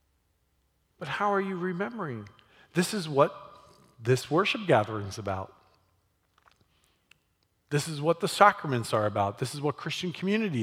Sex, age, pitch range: male, 40-59, 105-160 Hz